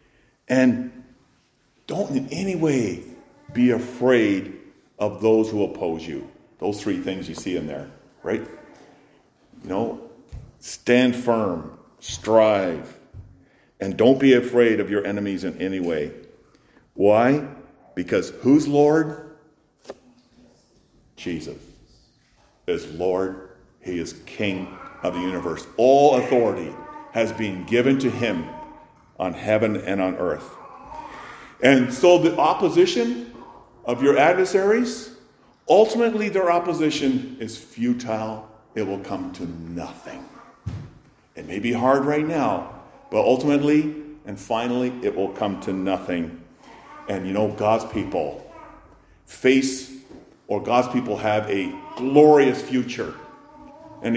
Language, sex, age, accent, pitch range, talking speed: English, male, 50-69, American, 110-150 Hz, 115 wpm